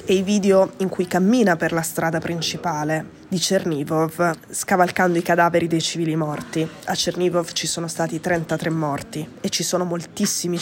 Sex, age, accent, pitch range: female, 20-39, native, 165-190 Hz